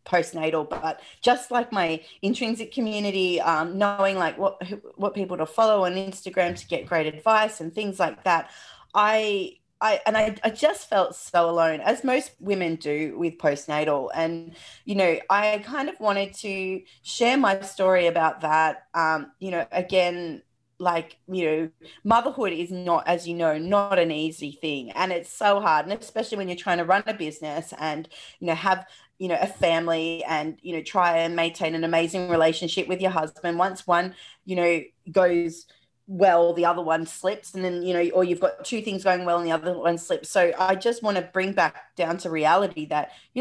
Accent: Australian